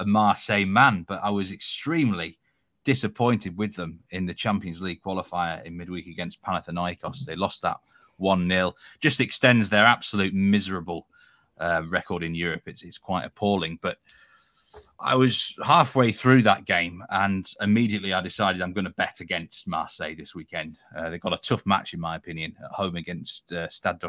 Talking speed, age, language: 175 wpm, 30-49, English